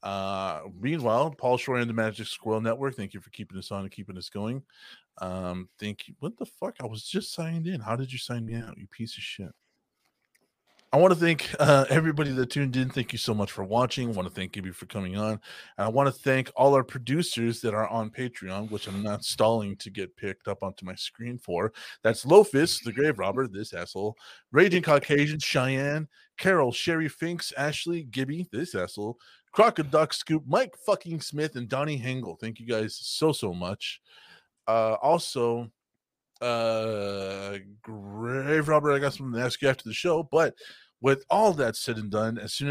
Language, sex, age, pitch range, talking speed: English, male, 30-49, 105-140 Hz, 200 wpm